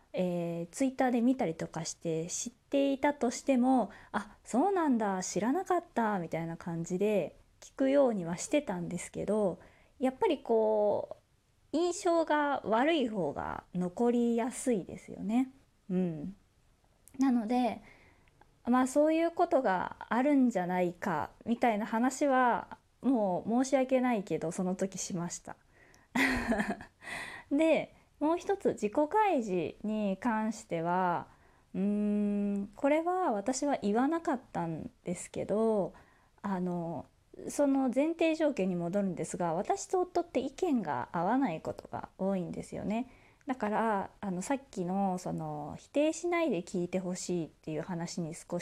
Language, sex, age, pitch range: Japanese, female, 20-39, 180-275 Hz